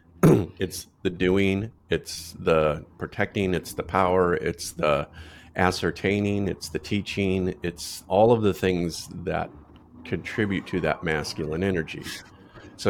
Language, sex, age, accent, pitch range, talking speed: English, male, 30-49, American, 80-95 Hz, 125 wpm